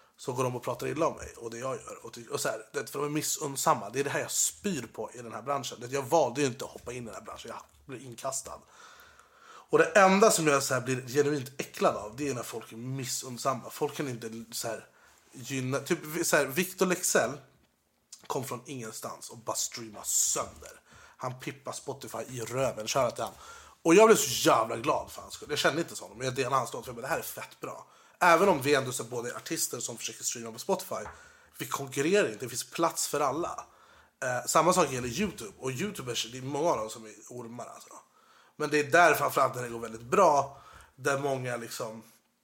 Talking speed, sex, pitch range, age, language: 225 wpm, male, 120-150 Hz, 30-49, Swedish